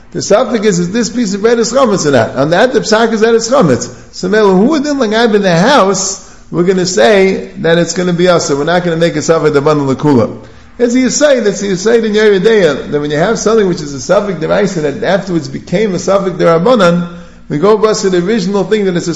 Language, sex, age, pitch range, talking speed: English, male, 50-69, 165-220 Hz, 255 wpm